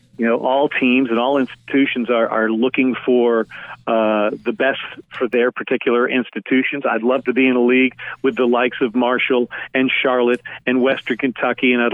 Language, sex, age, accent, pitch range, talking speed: English, male, 50-69, American, 120-135 Hz, 185 wpm